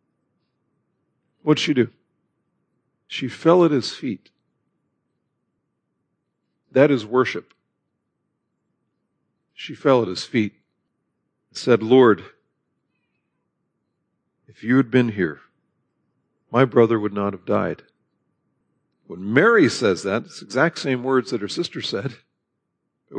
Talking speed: 115 wpm